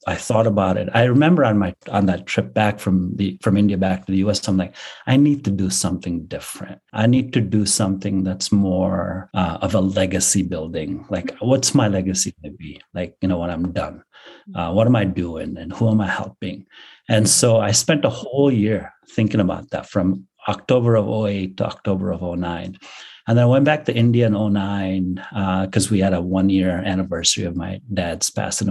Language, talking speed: English, 210 wpm